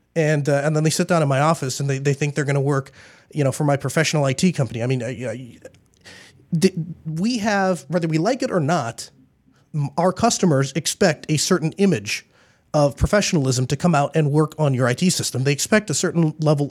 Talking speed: 215 wpm